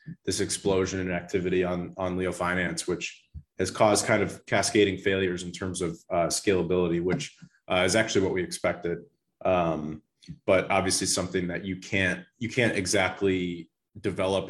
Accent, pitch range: American, 85-95 Hz